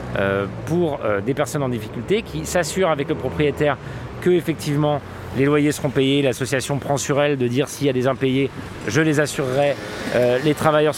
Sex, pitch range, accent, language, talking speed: male, 125-160 Hz, French, French, 190 wpm